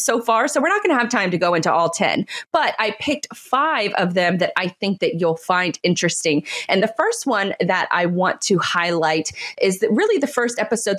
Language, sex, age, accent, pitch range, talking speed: English, female, 30-49, American, 175-235 Hz, 230 wpm